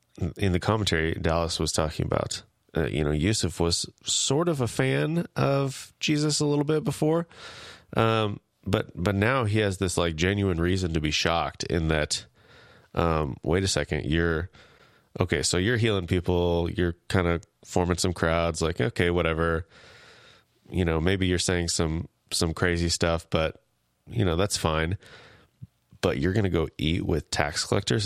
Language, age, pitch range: English, 30-49, 80-100 Hz